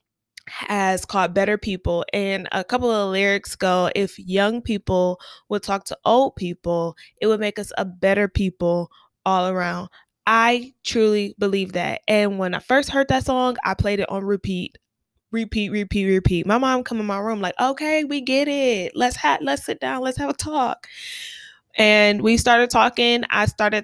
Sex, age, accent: female, 20-39, American